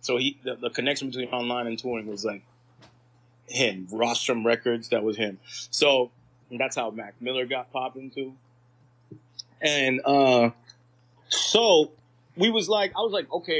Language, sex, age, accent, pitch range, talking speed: English, male, 20-39, American, 125-145 Hz, 155 wpm